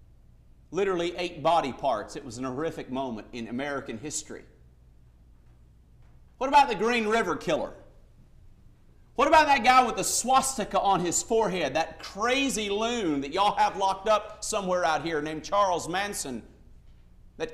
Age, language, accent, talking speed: 50-69, English, American, 145 wpm